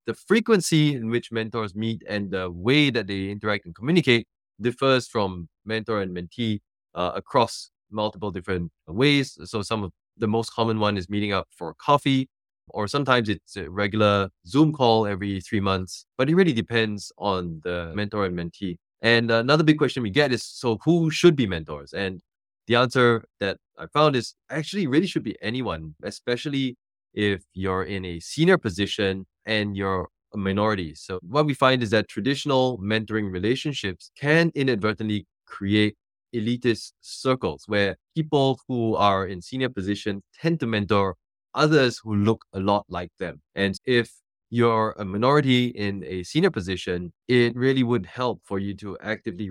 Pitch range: 95-125 Hz